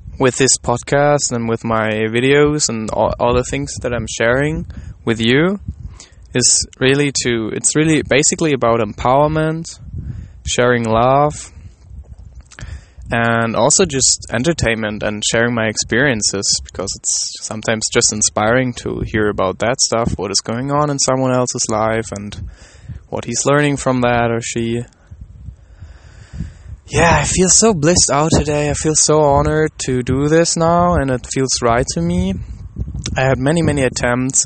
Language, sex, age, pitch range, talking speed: English, male, 10-29, 105-135 Hz, 150 wpm